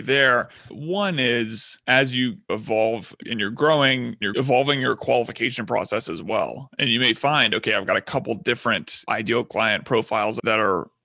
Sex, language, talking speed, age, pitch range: male, English, 170 wpm, 30-49, 115-140 Hz